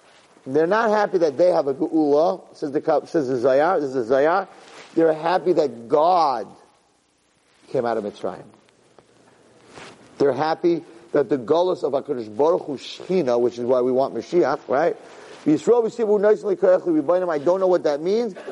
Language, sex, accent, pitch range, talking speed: English, male, American, 155-230 Hz, 180 wpm